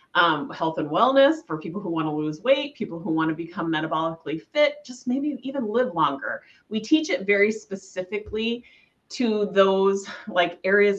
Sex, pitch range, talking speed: female, 170-235 Hz, 175 wpm